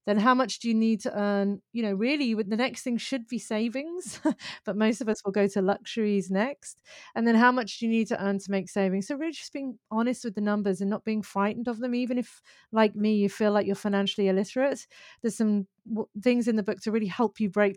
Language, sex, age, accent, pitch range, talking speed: English, female, 30-49, British, 200-235 Hz, 245 wpm